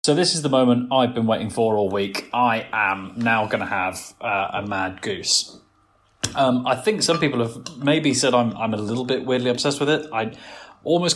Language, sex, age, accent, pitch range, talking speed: English, male, 20-39, British, 110-135 Hz, 210 wpm